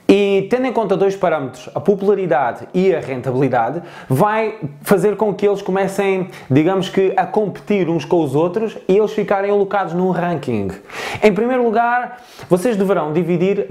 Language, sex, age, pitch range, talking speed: Portuguese, male, 20-39, 150-200 Hz, 160 wpm